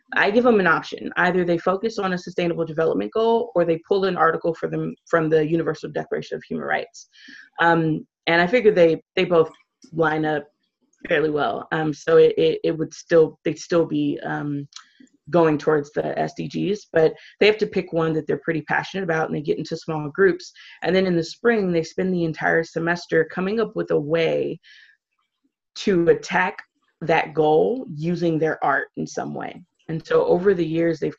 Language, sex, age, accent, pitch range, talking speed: English, female, 20-39, American, 155-180 Hz, 195 wpm